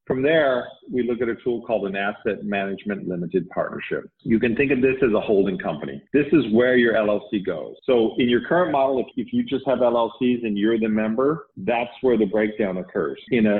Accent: American